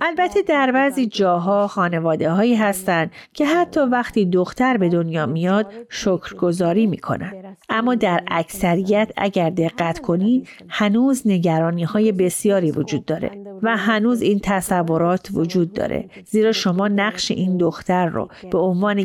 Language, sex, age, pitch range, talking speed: Persian, female, 40-59, 180-235 Hz, 130 wpm